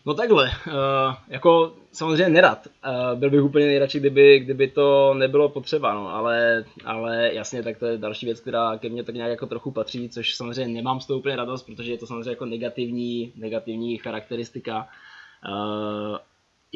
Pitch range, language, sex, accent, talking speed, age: 110-130 Hz, Czech, male, native, 170 wpm, 20-39